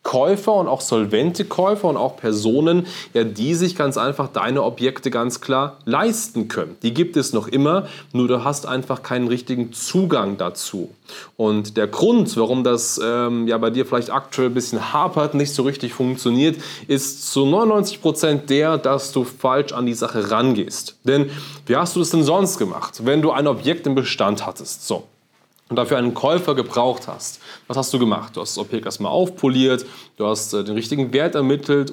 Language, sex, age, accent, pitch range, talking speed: German, male, 20-39, German, 120-150 Hz, 180 wpm